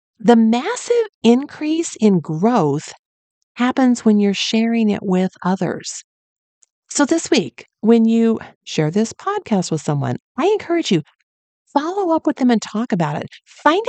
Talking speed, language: 145 wpm, English